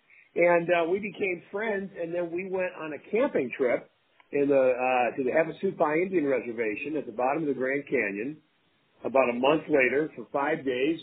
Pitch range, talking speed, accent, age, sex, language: 130-155 Hz, 190 wpm, American, 50-69, male, English